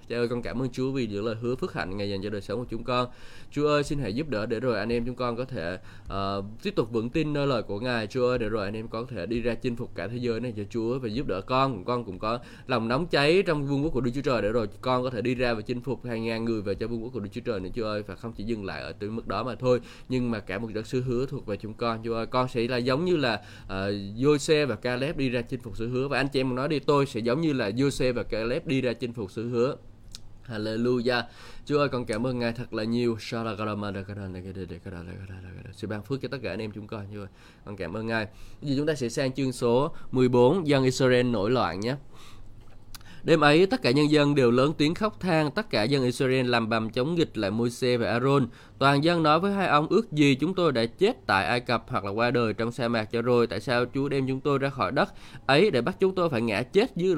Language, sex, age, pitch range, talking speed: Vietnamese, male, 20-39, 110-135 Hz, 280 wpm